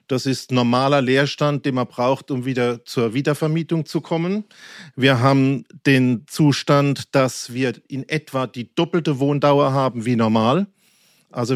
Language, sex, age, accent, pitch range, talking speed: German, male, 40-59, German, 130-155 Hz, 145 wpm